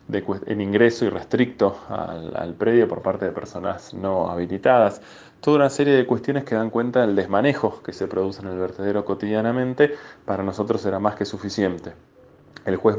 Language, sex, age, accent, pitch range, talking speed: Spanish, male, 20-39, Argentinian, 95-115 Hz, 175 wpm